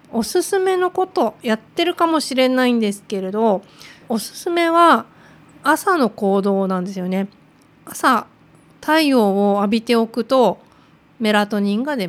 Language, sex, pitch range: Japanese, female, 200-260 Hz